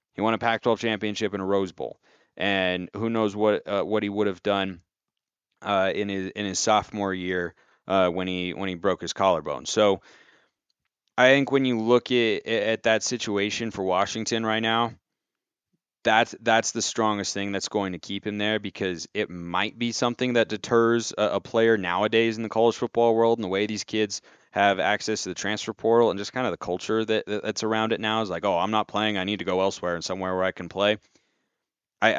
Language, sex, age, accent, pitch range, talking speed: English, male, 30-49, American, 95-115 Hz, 215 wpm